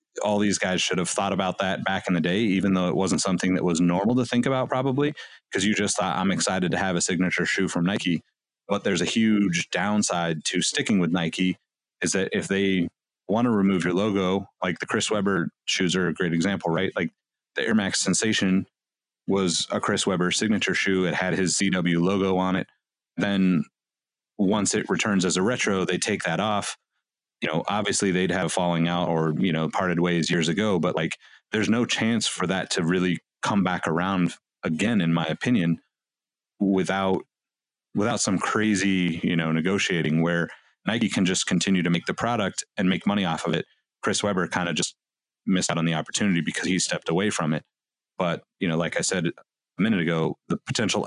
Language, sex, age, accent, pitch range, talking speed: English, male, 30-49, American, 85-95 Hz, 205 wpm